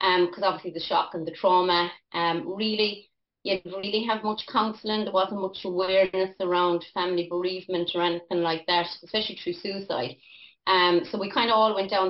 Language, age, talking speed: English, 30-49, 190 wpm